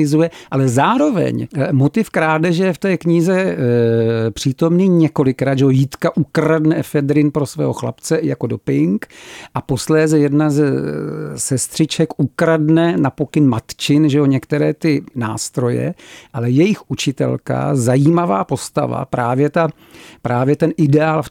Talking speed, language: 125 wpm, Czech